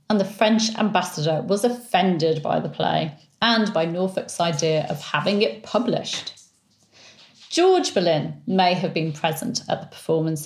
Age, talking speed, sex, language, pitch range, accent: 40-59, 150 wpm, female, English, 160-215 Hz, British